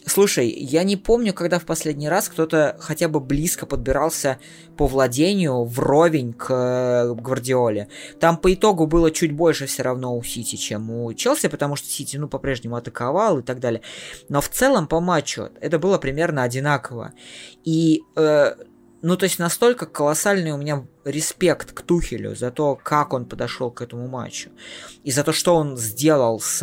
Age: 20-39